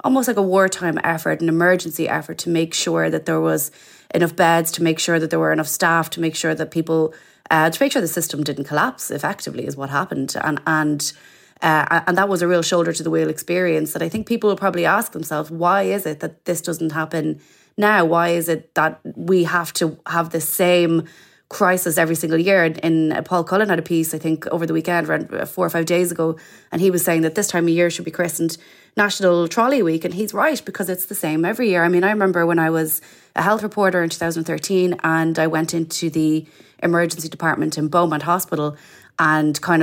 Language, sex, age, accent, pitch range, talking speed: English, female, 20-39, Irish, 155-180 Hz, 225 wpm